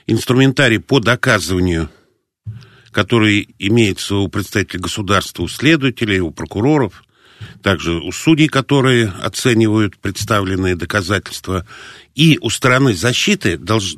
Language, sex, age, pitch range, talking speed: Russian, male, 50-69, 105-150 Hz, 105 wpm